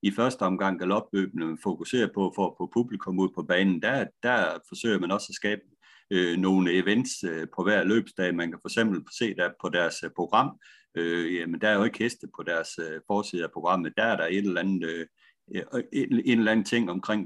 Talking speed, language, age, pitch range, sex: 220 wpm, Danish, 60-79, 90-105 Hz, male